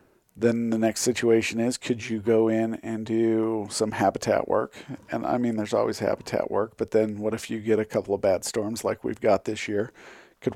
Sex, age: male, 40-59